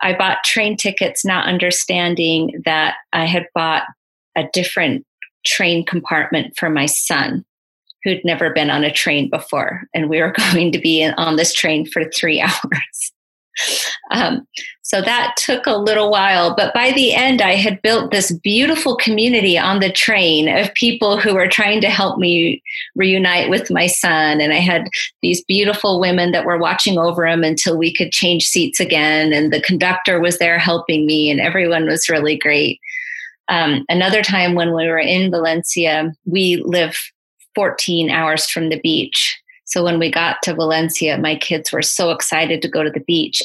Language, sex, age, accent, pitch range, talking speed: English, female, 30-49, American, 160-195 Hz, 175 wpm